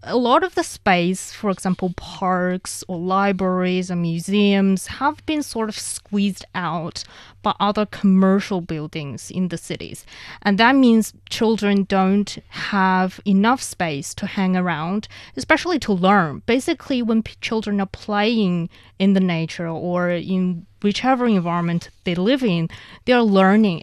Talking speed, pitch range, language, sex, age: 145 wpm, 185-220 Hz, English, female, 20-39